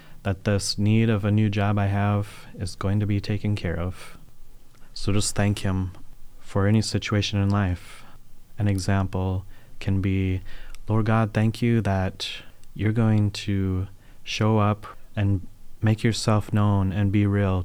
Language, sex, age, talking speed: English, male, 20-39, 155 wpm